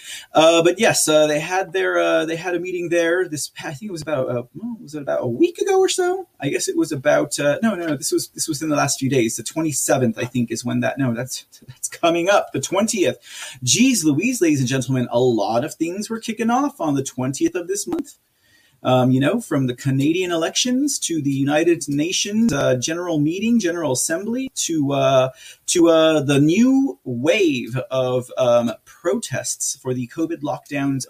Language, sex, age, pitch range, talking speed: English, male, 30-49, 130-190 Hz, 205 wpm